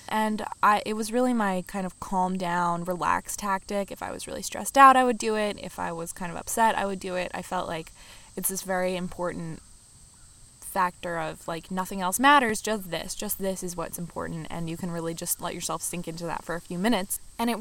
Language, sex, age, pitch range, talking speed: English, female, 20-39, 175-210 Hz, 230 wpm